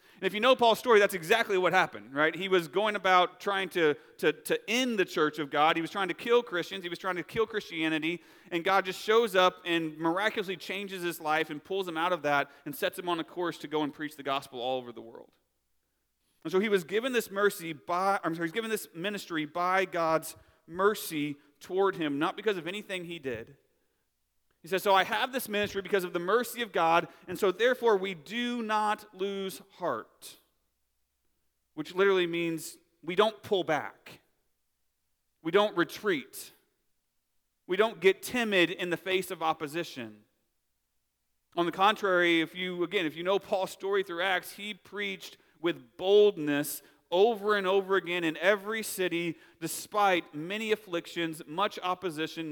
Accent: American